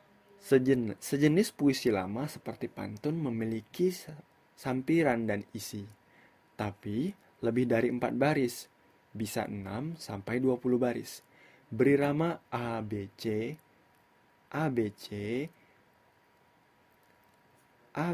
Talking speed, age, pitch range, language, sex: 95 wpm, 20-39, 110-140 Hz, Indonesian, male